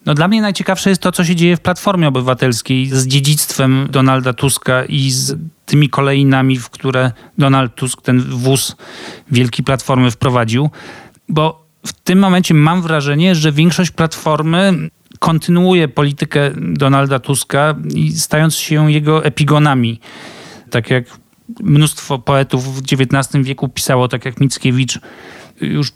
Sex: male